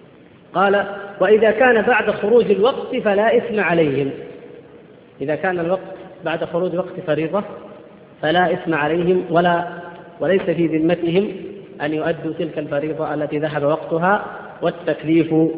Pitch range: 160-200 Hz